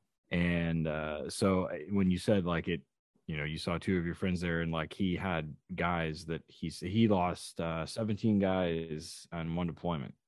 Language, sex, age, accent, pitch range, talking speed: English, male, 20-39, American, 80-100 Hz, 185 wpm